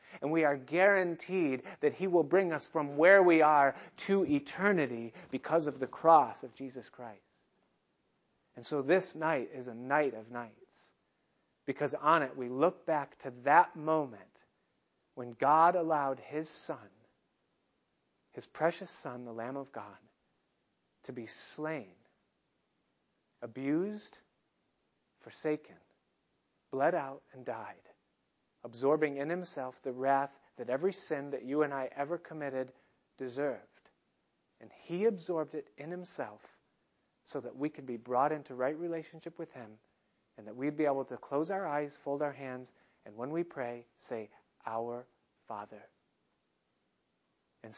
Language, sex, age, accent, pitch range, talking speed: English, male, 40-59, American, 125-160 Hz, 140 wpm